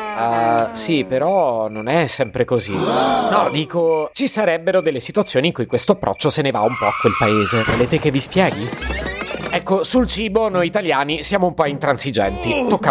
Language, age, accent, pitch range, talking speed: Italian, 30-49, native, 135-195 Hz, 180 wpm